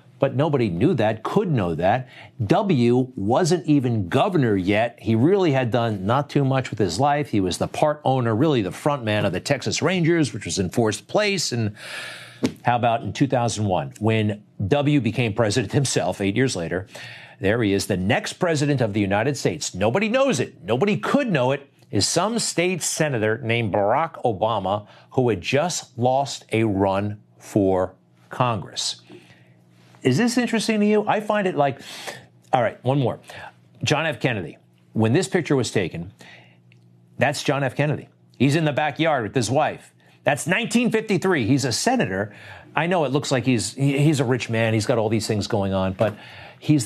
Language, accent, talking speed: English, American, 180 wpm